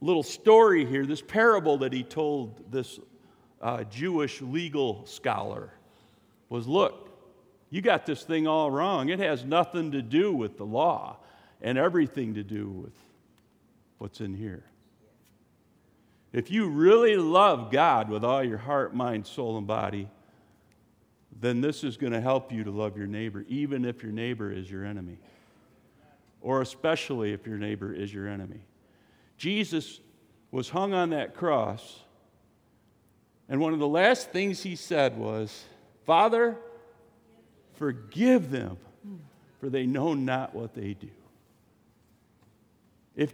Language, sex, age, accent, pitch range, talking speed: English, male, 50-69, American, 110-180 Hz, 140 wpm